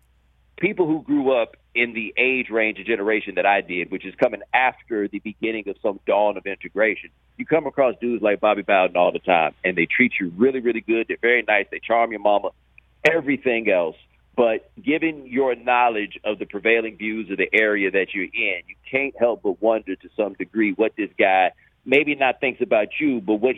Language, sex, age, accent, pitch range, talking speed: English, male, 50-69, American, 105-135 Hz, 210 wpm